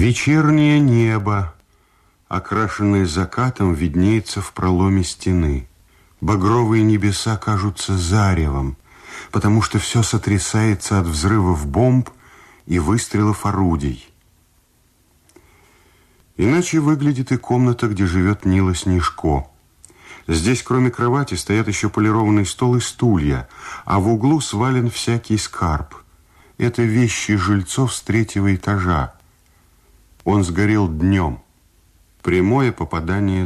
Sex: male